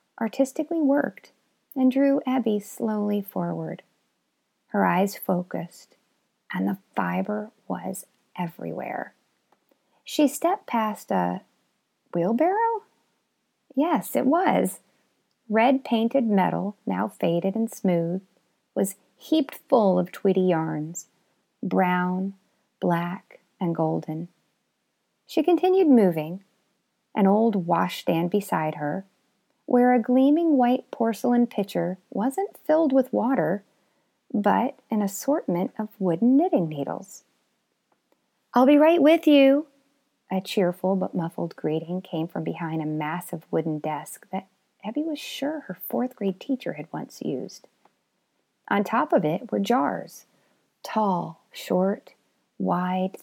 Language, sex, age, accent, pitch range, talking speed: English, female, 30-49, American, 185-265 Hz, 115 wpm